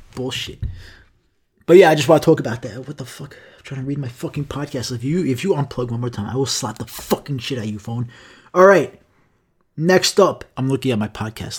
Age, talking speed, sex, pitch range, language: 20-39, 245 wpm, male, 125-150 Hz, English